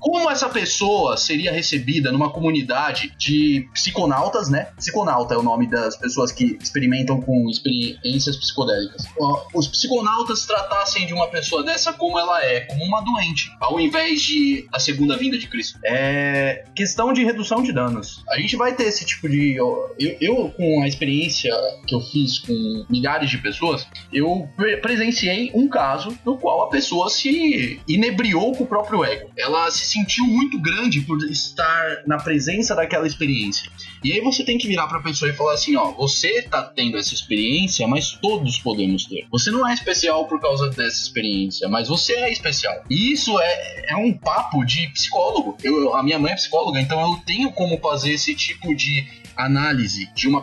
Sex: male